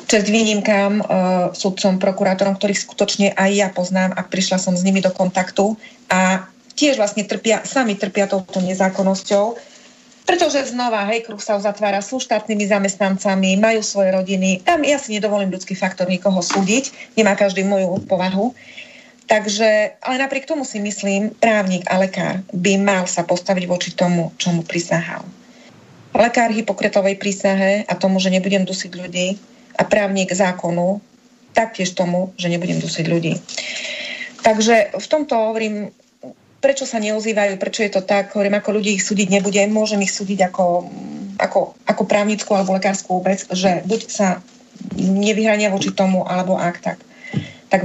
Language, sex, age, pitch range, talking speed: Slovak, female, 30-49, 190-220 Hz, 150 wpm